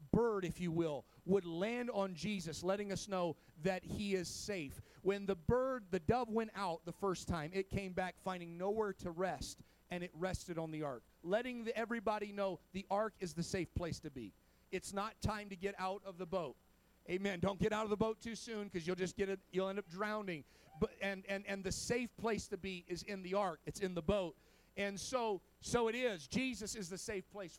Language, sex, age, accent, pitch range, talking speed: English, male, 40-59, American, 185-225 Hz, 225 wpm